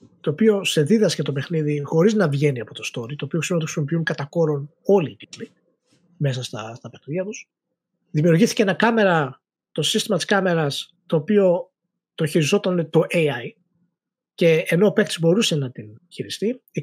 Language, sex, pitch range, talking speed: Greek, male, 155-200 Hz, 170 wpm